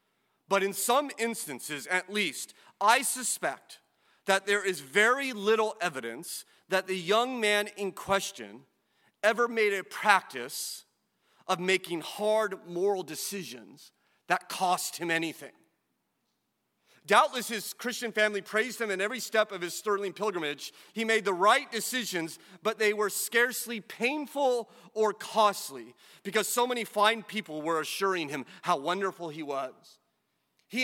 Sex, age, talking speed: male, 40-59, 140 wpm